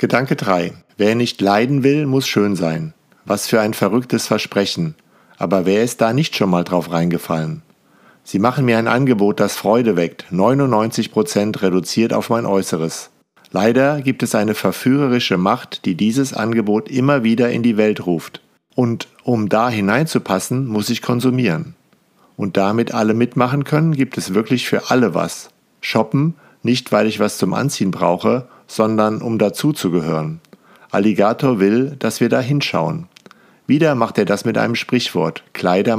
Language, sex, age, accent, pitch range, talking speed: German, male, 50-69, German, 100-125 Hz, 155 wpm